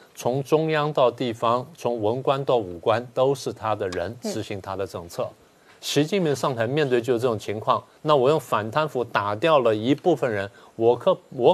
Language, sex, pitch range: Chinese, male, 115-155 Hz